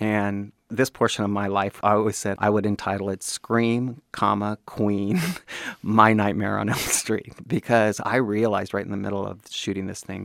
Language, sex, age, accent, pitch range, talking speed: English, male, 40-59, American, 100-115 Hz, 180 wpm